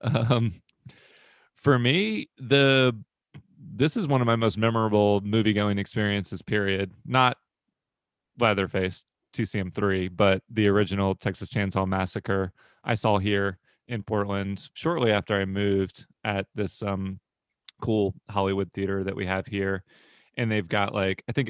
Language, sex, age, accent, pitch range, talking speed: English, male, 30-49, American, 100-115 Hz, 140 wpm